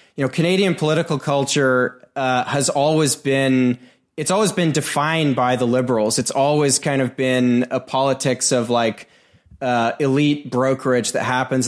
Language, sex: English, male